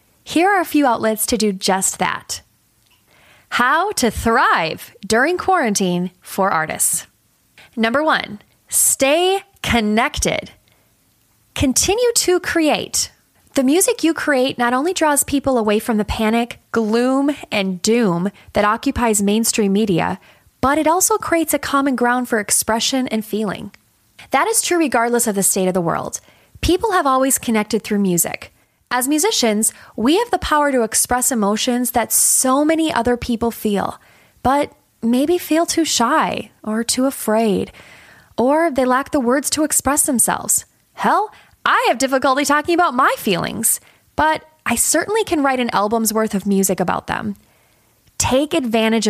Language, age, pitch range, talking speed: English, 20-39, 215-295 Hz, 150 wpm